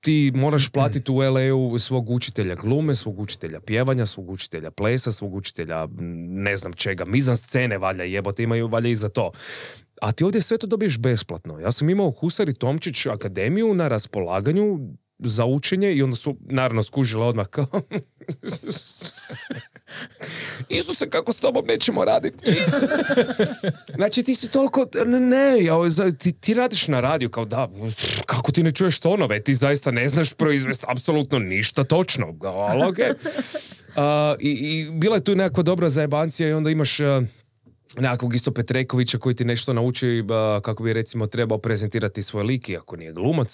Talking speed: 160 wpm